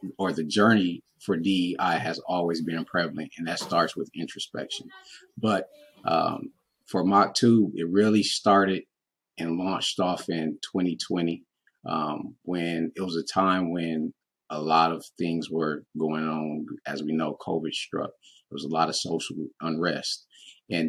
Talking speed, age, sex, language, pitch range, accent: 155 wpm, 30-49, male, English, 80-100 Hz, American